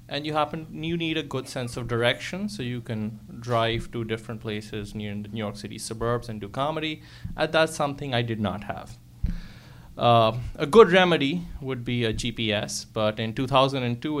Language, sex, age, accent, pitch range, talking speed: English, male, 30-49, Indian, 115-145 Hz, 185 wpm